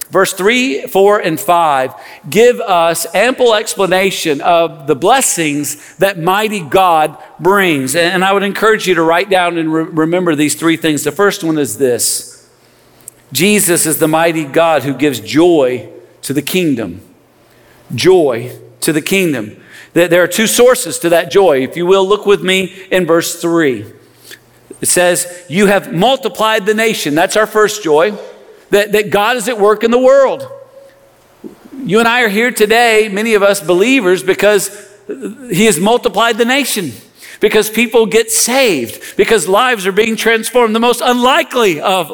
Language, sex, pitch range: English, male, 170-225 Hz